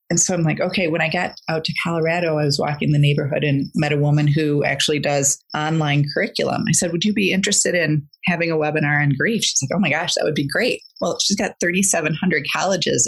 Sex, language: female, English